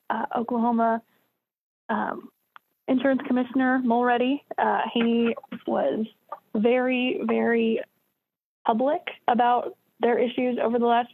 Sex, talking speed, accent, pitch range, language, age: female, 95 wpm, American, 215-245 Hz, English, 20-39